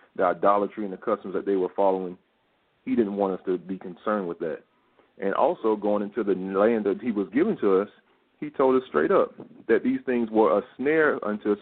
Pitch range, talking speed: 95-110 Hz, 220 wpm